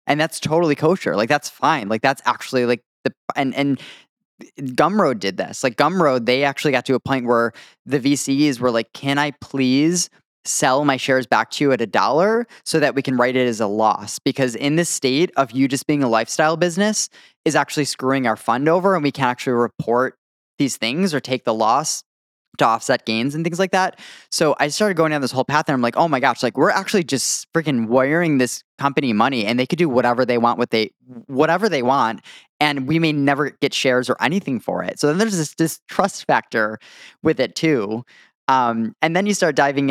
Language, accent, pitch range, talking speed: English, American, 125-155 Hz, 225 wpm